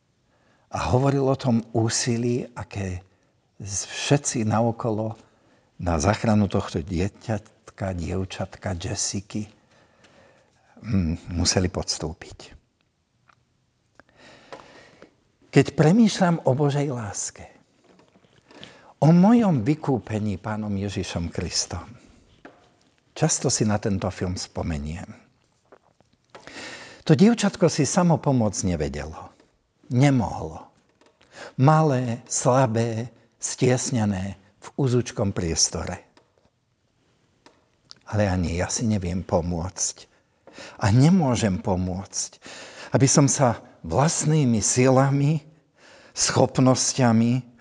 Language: Slovak